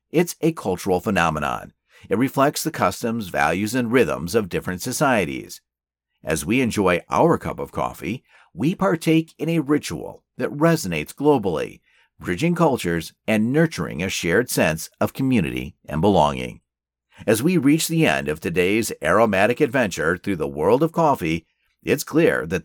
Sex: male